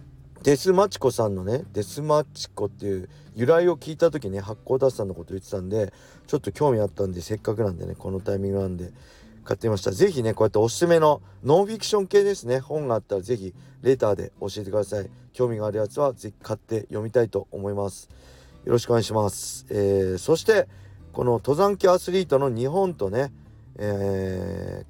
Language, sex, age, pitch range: Japanese, male, 40-59, 100-140 Hz